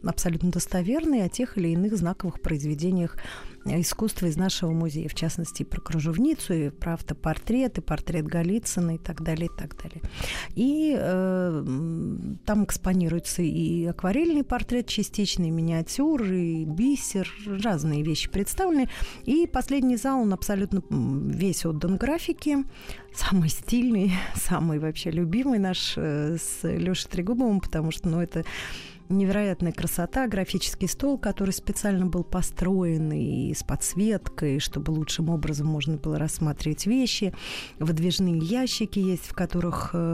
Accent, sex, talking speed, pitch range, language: native, female, 130 wpm, 165-210 Hz, Russian